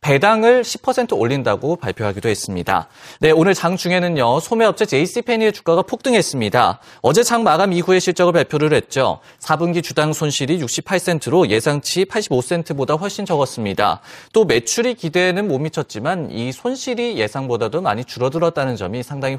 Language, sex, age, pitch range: Korean, male, 30-49, 130-195 Hz